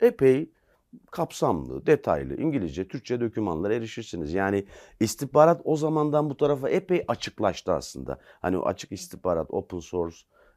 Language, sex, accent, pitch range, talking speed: Turkish, male, native, 90-145 Hz, 125 wpm